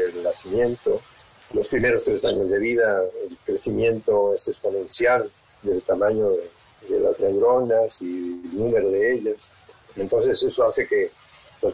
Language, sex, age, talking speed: Spanish, male, 50-69, 140 wpm